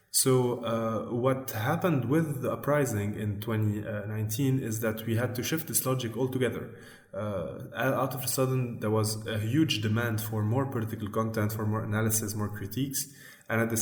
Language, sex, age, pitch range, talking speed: English, male, 20-39, 110-125 Hz, 175 wpm